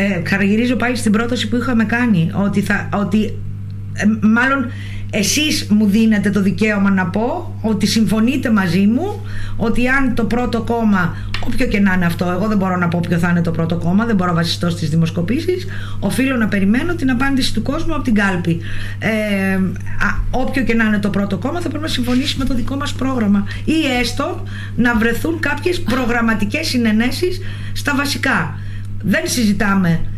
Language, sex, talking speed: Greek, female, 170 wpm